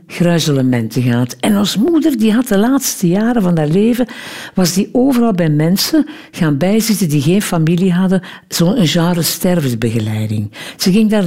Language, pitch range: Dutch, 160-235 Hz